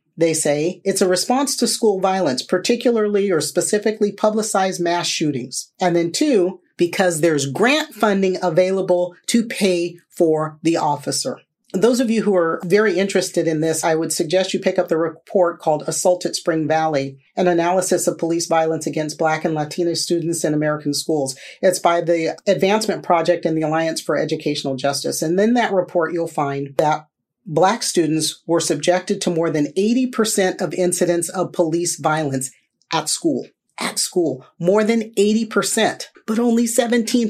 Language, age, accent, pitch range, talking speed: English, 40-59, American, 165-210 Hz, 170 wpm